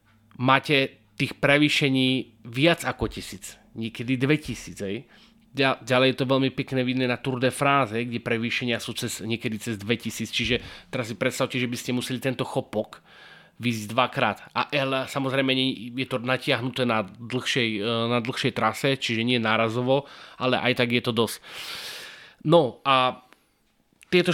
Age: 30-49